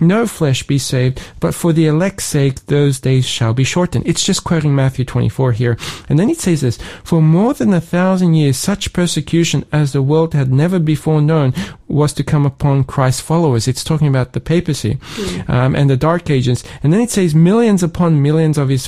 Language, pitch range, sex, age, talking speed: English, 125-160 Hz, male, 40-59, 205 wpm